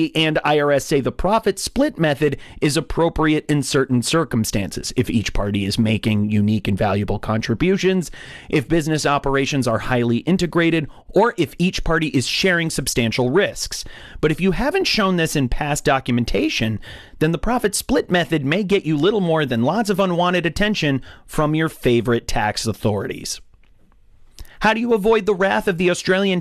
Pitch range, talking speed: 120-180 Hz, 165 wpm